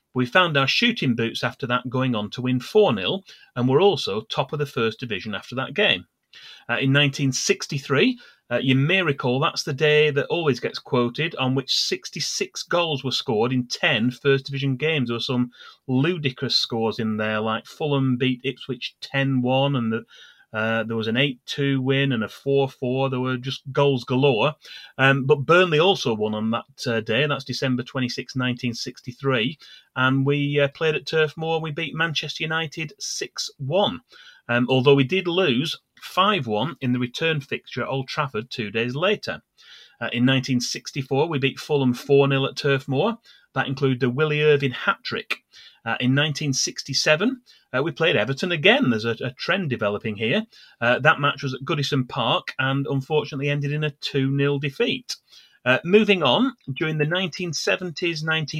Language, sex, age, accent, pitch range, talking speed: English, male, 30-49, British, 125-155 Hz, 170 wpm